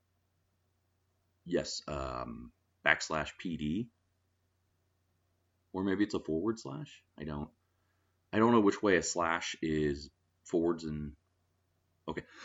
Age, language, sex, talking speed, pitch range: 30-49, English, male, 110 wpm, 75-90 Hz